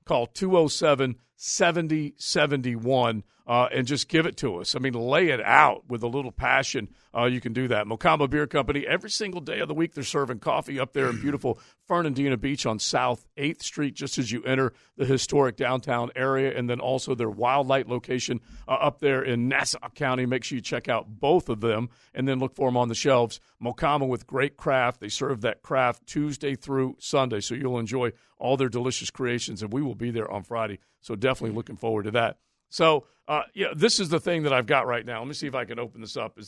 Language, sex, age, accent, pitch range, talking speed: English, male, 50-69, American, 120-140 Hz, 220 wpm